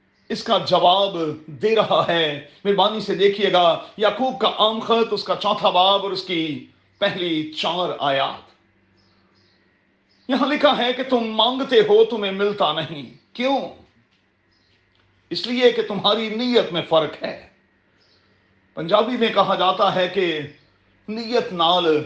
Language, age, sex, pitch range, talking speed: Urdu, 40-59, male, 165-240 Hz, 135 wpm